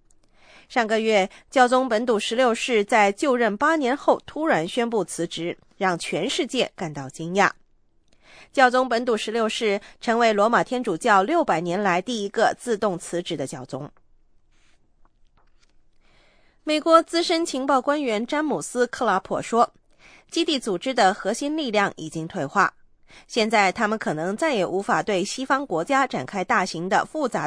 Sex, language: female, English